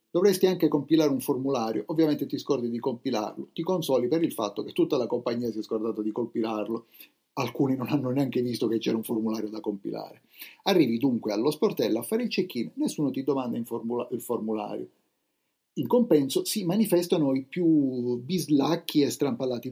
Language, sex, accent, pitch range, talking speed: Italian, male, native, 110-140 Hz, 175 wpm